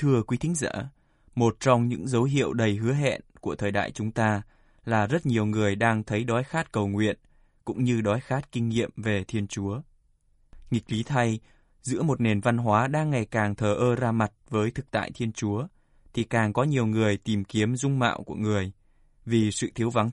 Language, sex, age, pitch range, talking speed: Vietnamese, male, 20-39, 105-125 Hz, 210 wpm